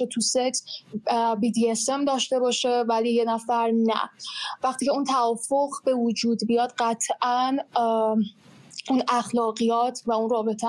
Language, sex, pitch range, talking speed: Persian, female, 225-245 Hz, 135 wpm